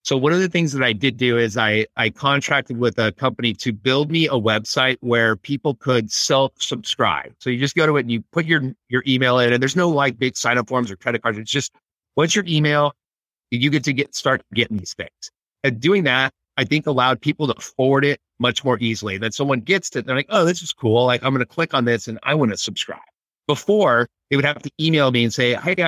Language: English